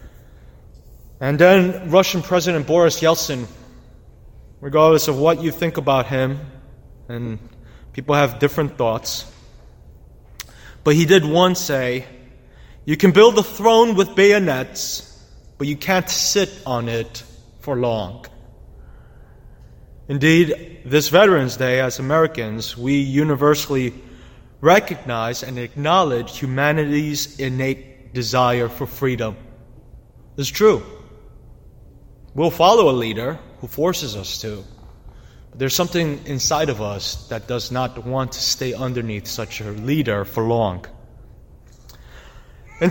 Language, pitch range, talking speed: English, 125-170 Hz, 115 wpm